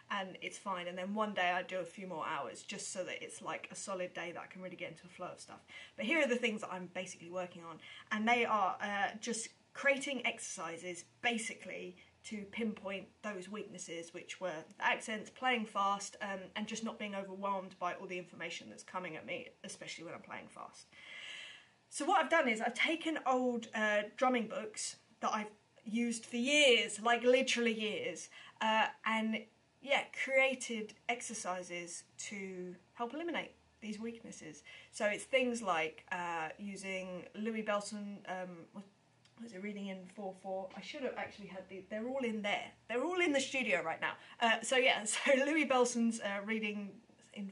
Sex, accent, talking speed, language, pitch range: female, British, 185 wpm, English, 190-240 Hz